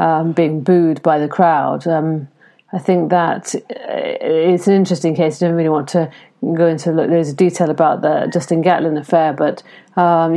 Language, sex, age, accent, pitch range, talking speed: English, female, 50-69, British, 160-185 Hz, 190 wpm